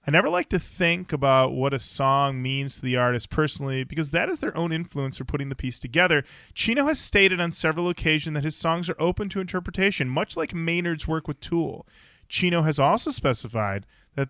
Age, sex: 30-49, male